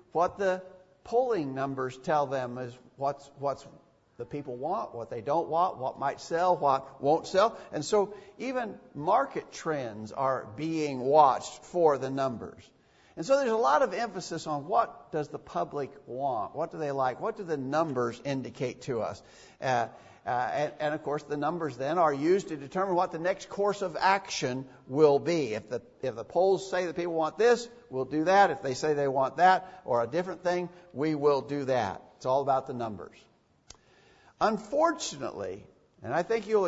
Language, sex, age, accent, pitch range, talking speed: English, male, 50-69, American, 140-185 Hz, 195 wpm